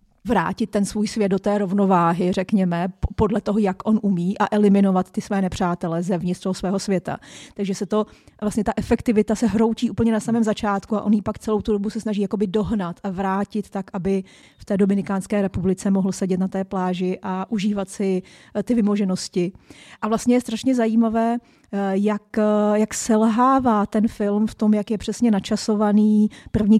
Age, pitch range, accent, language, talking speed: 30-49, 195-225 Hz, native, Czech, 180 wpm